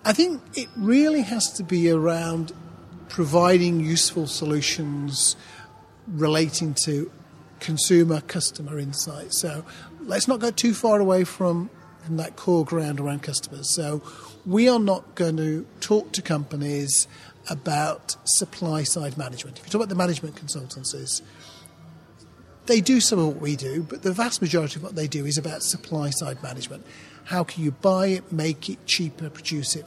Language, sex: English, male